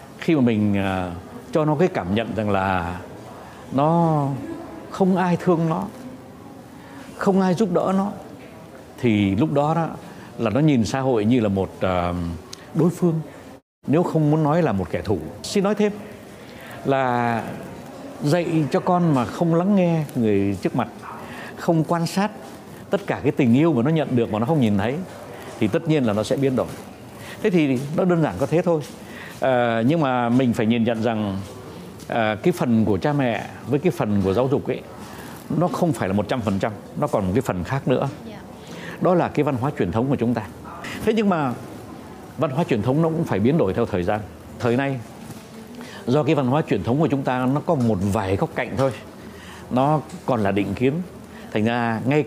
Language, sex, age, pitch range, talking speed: Vietnamese, male, 60-79, 110-165 Hz, 200 wpm